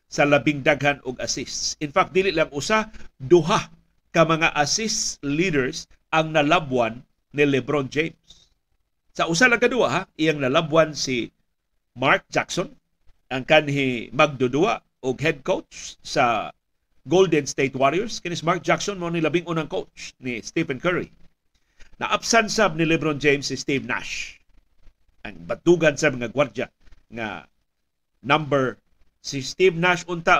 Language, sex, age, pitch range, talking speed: Filipino, male, 50-69, 135-175 Hz, 140 wpm